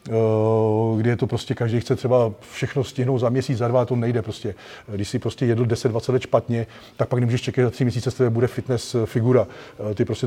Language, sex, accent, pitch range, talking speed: Czech, male, native, 125-145 Hz, 210 wpm